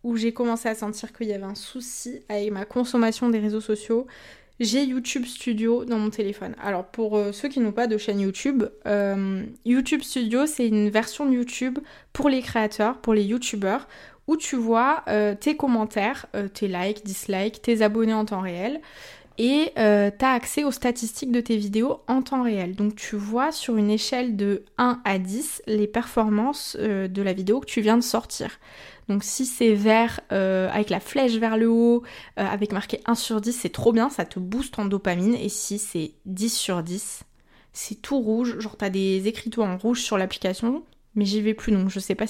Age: 20-39